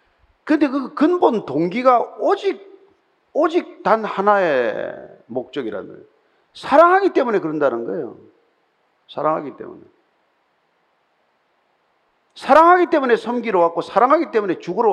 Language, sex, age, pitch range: Korean, male, 50-69, 230-355 Hz